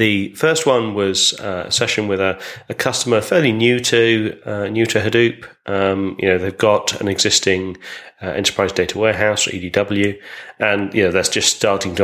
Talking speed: 185 wpm